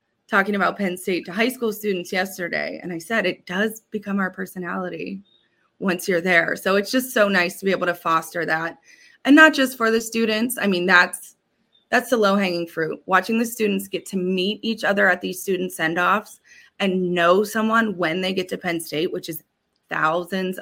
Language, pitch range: English, 175-220 Hz